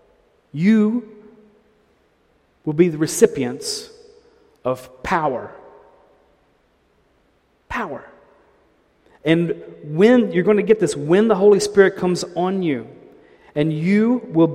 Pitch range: 145-200 Hz